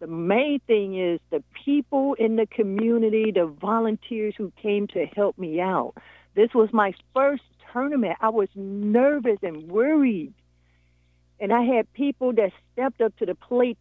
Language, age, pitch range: English, 60-79, 175-230 Hz